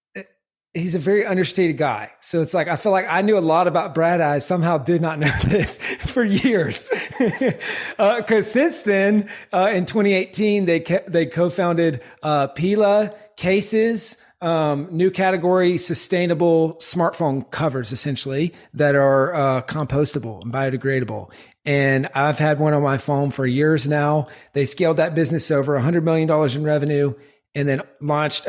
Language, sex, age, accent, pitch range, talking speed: English, male, 30-49, American, 140-175 Hz, 160 wpm